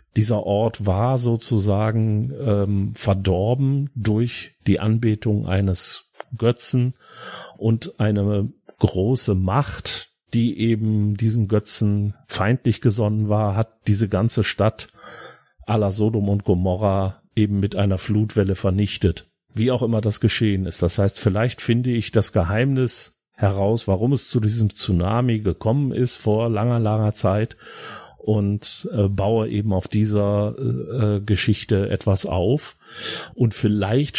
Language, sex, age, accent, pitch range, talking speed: German, male, 40-59, German, 100-115 Hz, 130 wpm